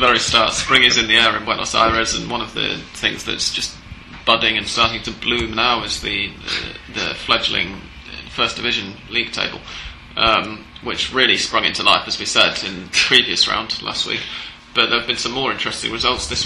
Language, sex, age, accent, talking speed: English, male, 20-39, British, 205 wpm